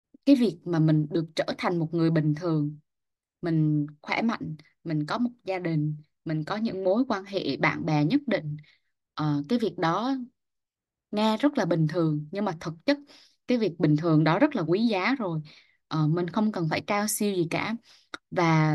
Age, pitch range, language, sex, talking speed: 10-29, 160-230 Hz, Vietnamese, female, 190 wpm